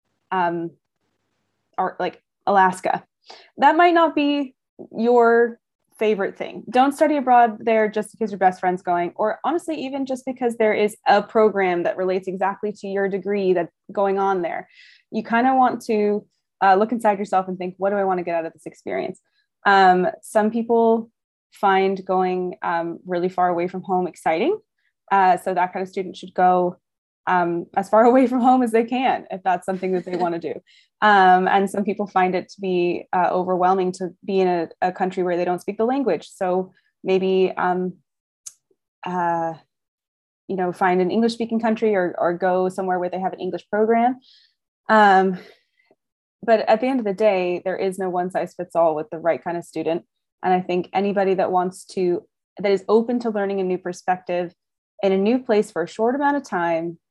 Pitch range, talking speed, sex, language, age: 180-220 Hz, 195 wpm, female, English, 20-39